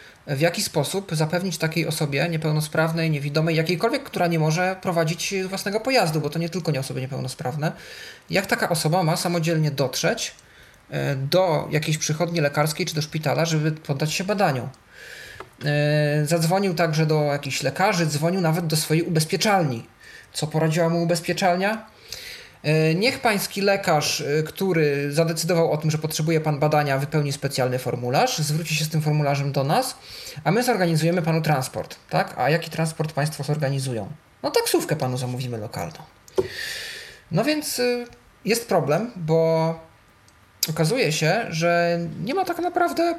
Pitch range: 150-190 Hz